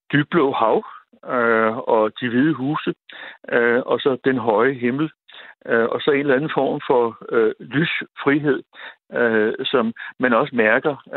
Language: Danish